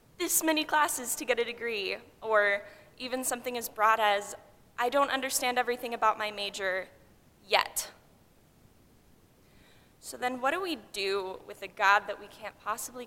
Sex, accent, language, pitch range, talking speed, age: female, American, English, 205-250 Hz, 155 wpm, 10-29